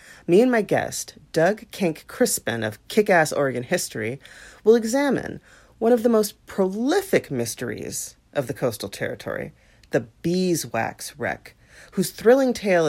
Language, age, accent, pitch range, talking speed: English, 40-59, American, 130-190 Hz, 135 wpm